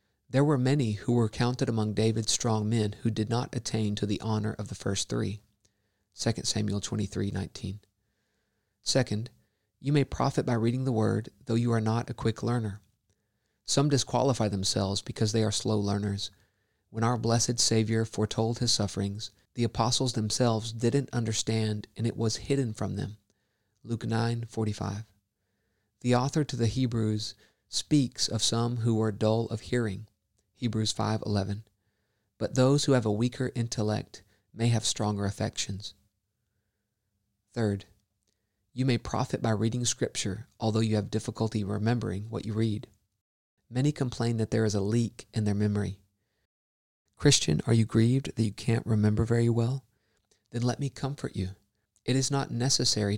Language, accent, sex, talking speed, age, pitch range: English, American, male, 160 wpm, 40-59, 105-120 Hz